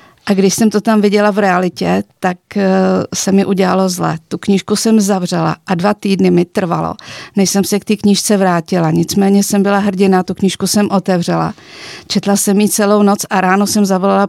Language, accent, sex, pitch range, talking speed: Czech, native, female, 185-200 Hz, 195 wpm